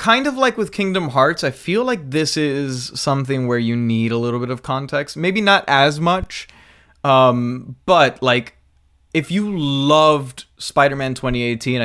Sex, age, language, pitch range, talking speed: male, 20-39, English, 110-140 Hz, 160 wpm